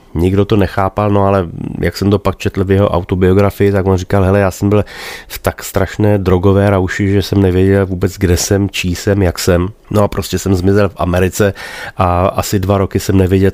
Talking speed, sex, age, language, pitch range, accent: 215 wpm, male, 30-49, Czech, 85-100 Hz, native